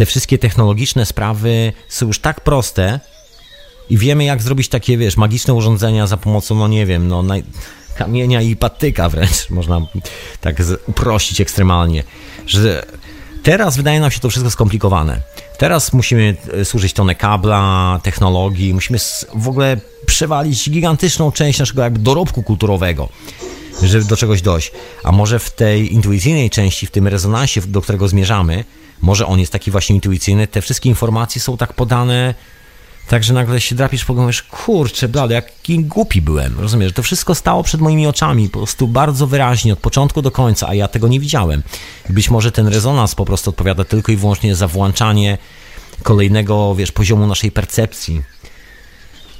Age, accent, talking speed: 30-49, native, 160 wpm